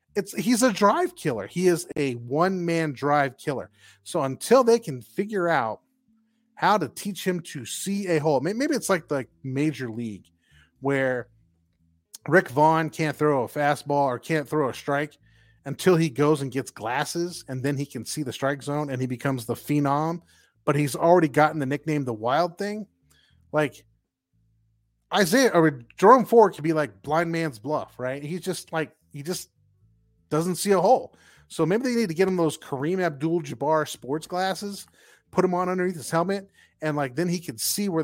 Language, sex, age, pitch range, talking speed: English, male, 30-49, 130-180 Hz, 190 wpm